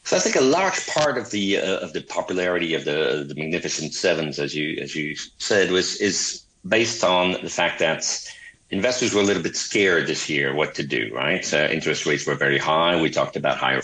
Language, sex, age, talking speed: English, male, 50-69, 225 wpm